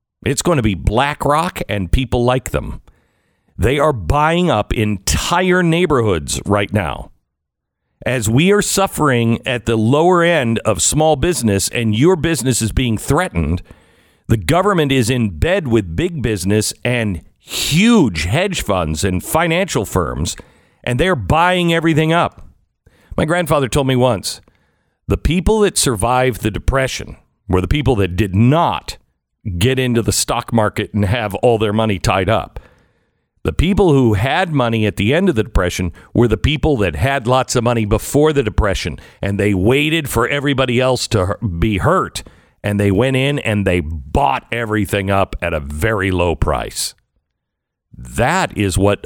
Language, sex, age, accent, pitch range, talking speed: English, male, 50-69, American, 95-145 Hz, 160 wpm